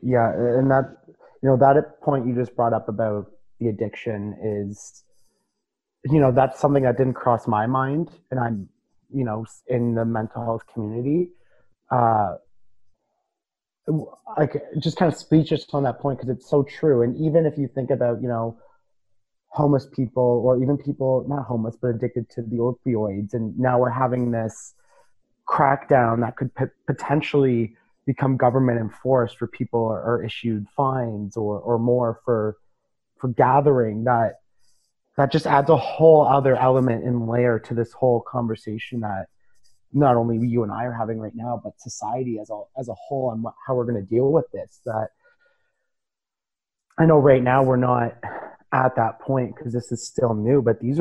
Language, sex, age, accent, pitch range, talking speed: English, male, 30-49, American, 115-135 Hz, 170 wpm